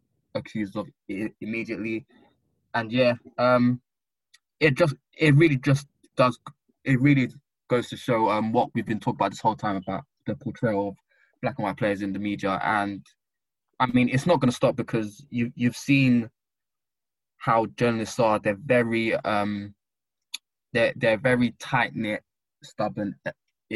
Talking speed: 155 wpm